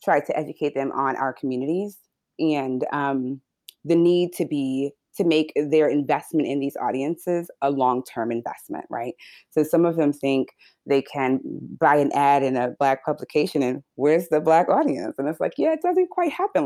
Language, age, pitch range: English, 20-39, 135-165 Hz